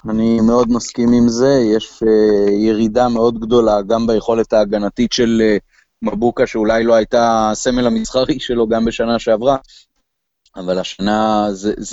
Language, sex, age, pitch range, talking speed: Hebrew, male, 30-49, 105-120 Hz, 140 wpm